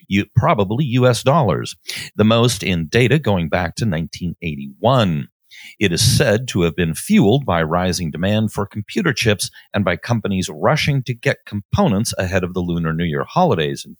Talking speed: 165 wpm